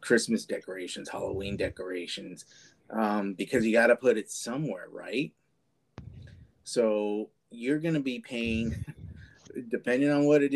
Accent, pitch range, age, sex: American, 105-130 Hz, 30-49, male